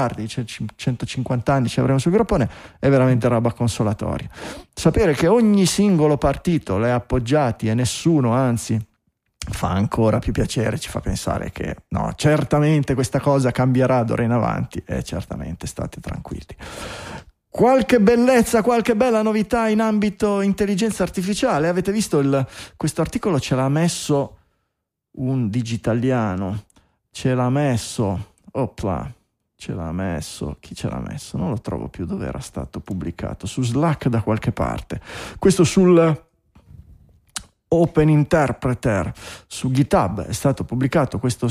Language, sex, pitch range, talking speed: Italian, male, 115-165 Hz, 135 wpm